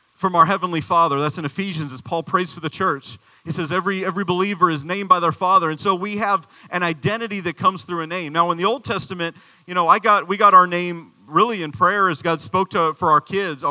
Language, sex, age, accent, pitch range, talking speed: English, male, 40-59, American, 155-190 Hz, 250 wpm